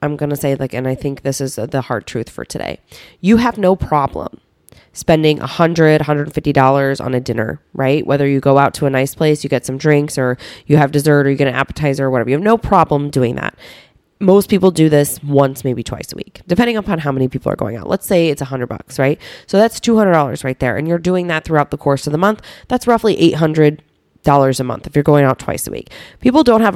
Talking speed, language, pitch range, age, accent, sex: 245 wpm, English, 135-165 Hz, 20-39, American, female